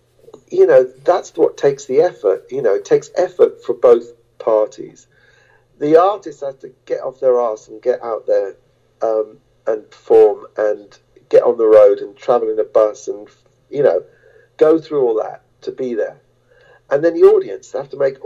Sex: male